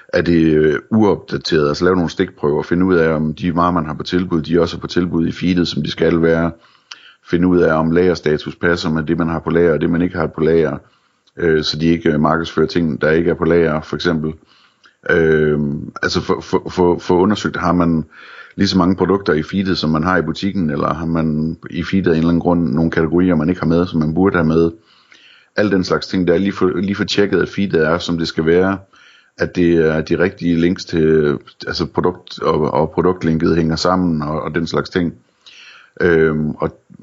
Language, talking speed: Danish, 225 wpm